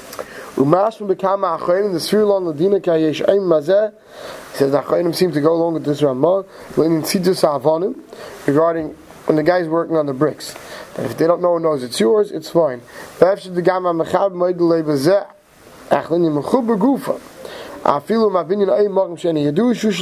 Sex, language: male, English